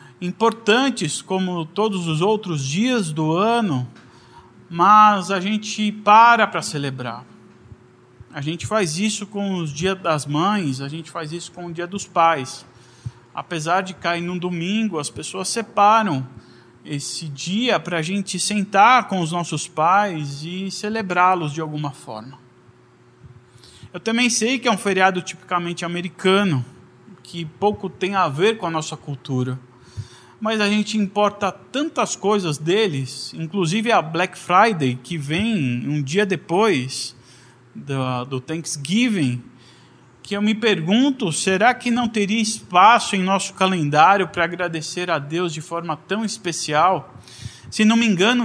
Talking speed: 145 wpm